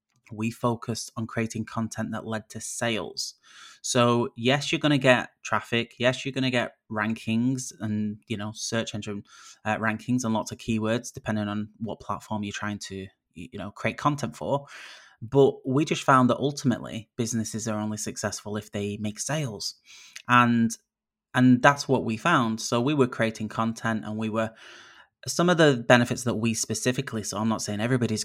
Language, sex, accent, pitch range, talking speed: English, male, British, 110-125 Hz, 175 wpm